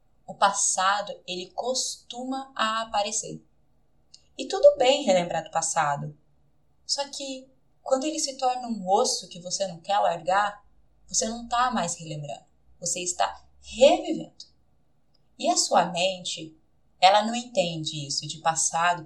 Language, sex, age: Portuguese, female, 20-39